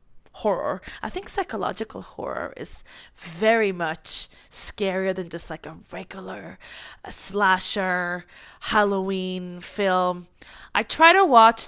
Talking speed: 110 wpm